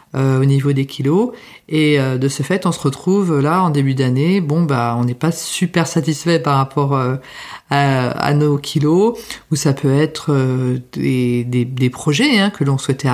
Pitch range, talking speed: 135-170 Hz, 200 wpm